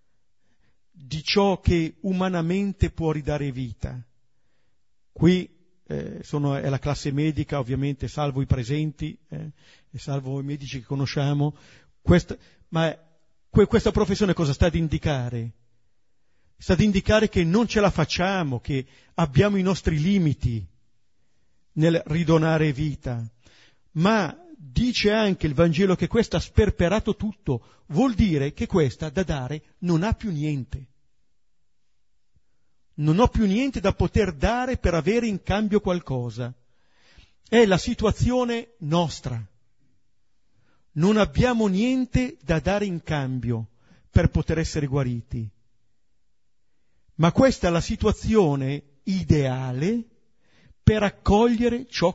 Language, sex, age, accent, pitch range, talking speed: Italian, male, 50-69, native, 130-200 Hz, 120 wpm